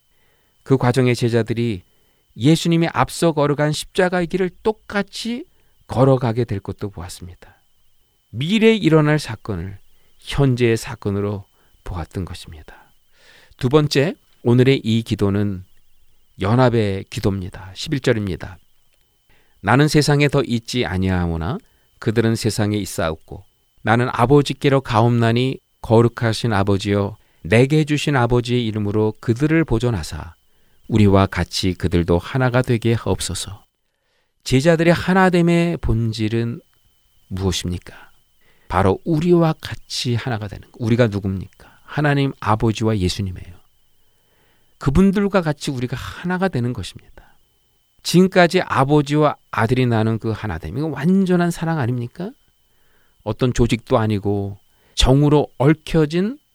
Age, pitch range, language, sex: 40-59, 100-145 Hz, Korean, male